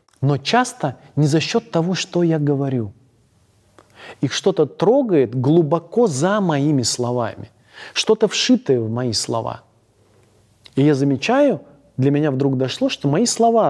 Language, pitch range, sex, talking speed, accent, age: Russian, 115-155 Hz, male, 135 wpm, native, 30-49